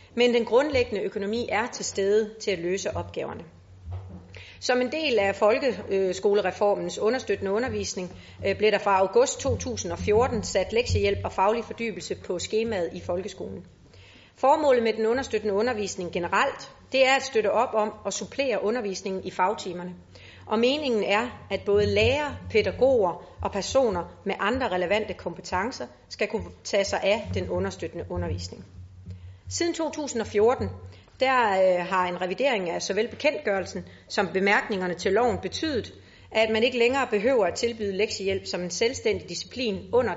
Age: 40-59